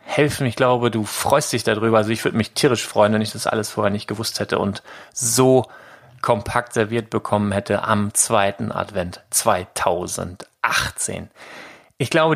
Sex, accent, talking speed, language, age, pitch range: male, German, 160 wpm, German, 30-49, 105-125 Hz